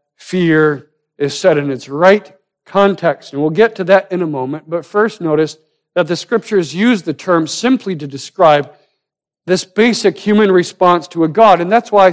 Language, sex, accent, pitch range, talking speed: English, male, American, 140-185 Hz, 185 wpm